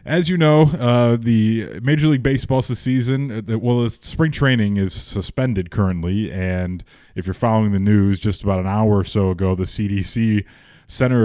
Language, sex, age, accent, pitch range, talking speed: English, male, 20-39, American, 95-120 Hz, 170 wpm